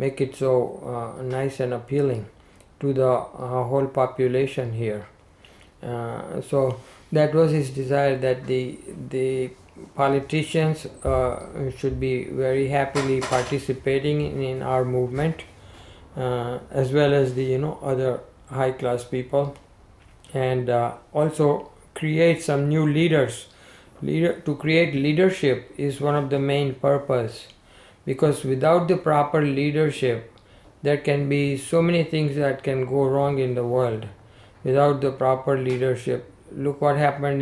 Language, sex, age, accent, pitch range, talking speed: English, male, 50-69, Indian, 125-145 Hz, 135 wpm